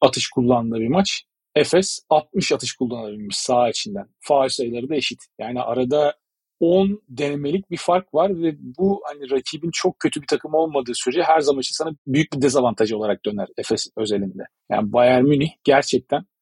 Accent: native